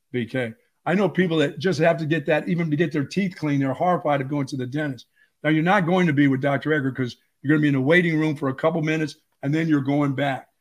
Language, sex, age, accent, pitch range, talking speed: English, male, 50-69, American, 140-160 Hz, 285 wpm